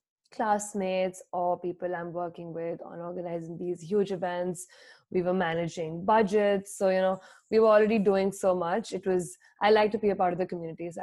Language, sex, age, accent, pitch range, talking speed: English, female, 20-39, Indian, 180-205 Hz, 190 wpm